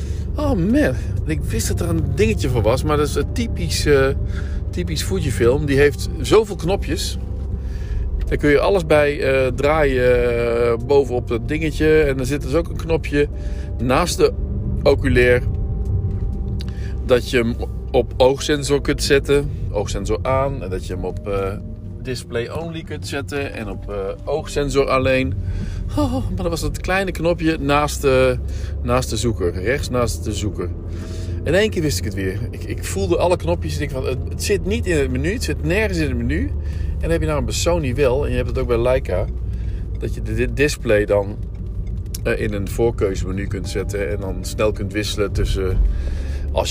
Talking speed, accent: 185 wpm, Dutch